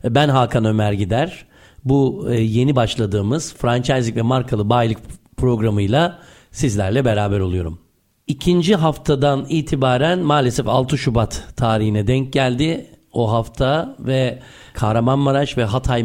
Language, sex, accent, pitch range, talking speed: Turkish, male, native, 110-140 Hz, 110 wpm